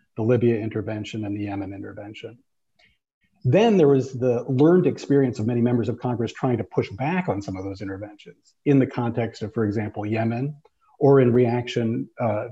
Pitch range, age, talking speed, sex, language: 110-125 Hz, 40-59, 180 wpm, male, English